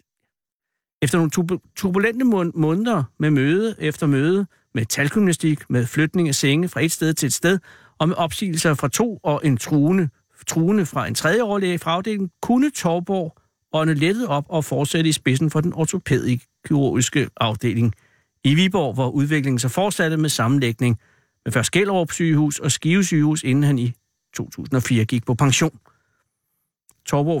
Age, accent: 60-79, native